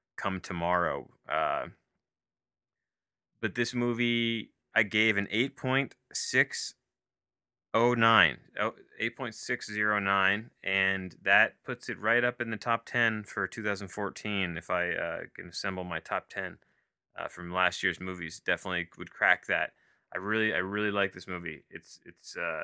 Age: 30-49